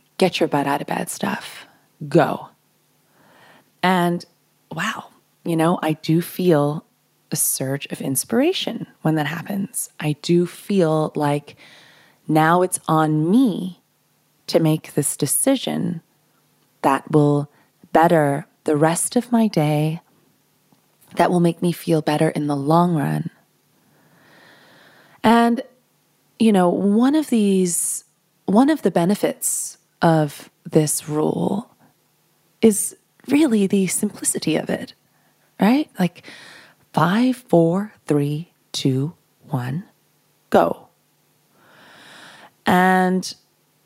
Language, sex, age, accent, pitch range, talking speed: English, female, 20-39, American, 155-200 Hz, 110 wpm